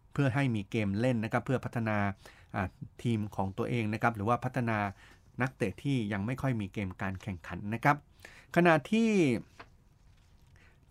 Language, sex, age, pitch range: Thai, male, 30-49, 105-130 Hz